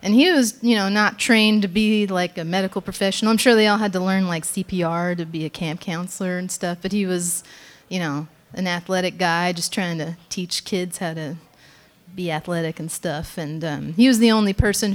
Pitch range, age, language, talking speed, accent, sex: 170-195 Hz, 30-49, English, 220 wpm, American, female